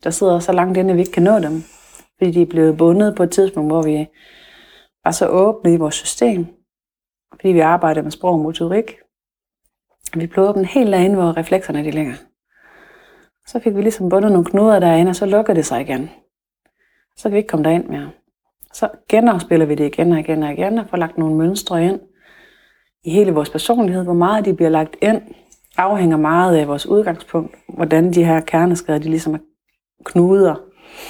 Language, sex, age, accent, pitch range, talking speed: Danish, female, 30-49, native, 160-190 Hz, 200 wpm